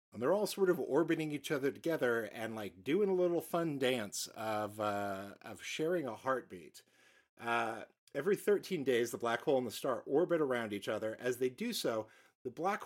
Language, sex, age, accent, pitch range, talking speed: English, male, 50-69, American, 115-155 Hz, 195 wpm